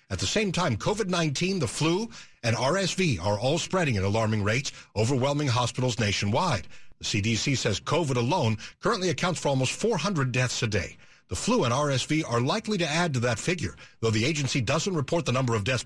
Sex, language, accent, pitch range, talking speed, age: male, English, American, 110-150 Hz, 195 wpm, 60-79